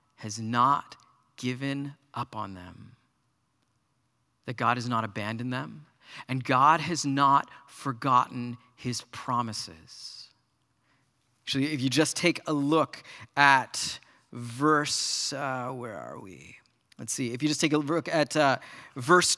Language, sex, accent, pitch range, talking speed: English, male, American, 130-160 Hz, 135 wpm